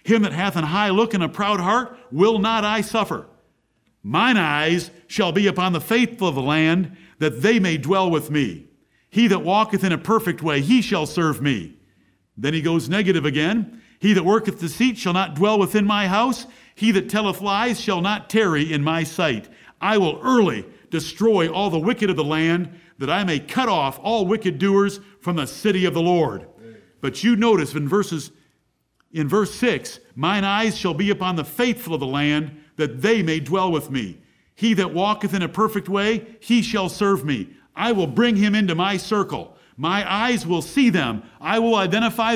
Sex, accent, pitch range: male, American, 155-210 Hz